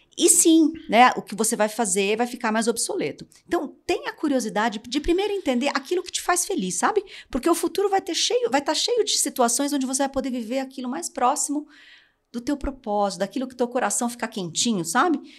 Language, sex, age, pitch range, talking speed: Portuguese, female, 40-59, 195-290 Hz, 200 wpm